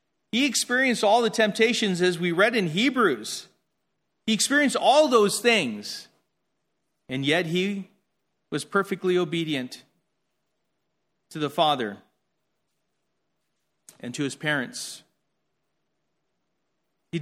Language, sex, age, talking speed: English, male, 40-59, 100 wpm